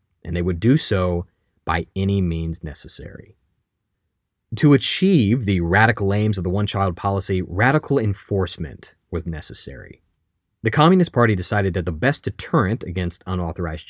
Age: 30-49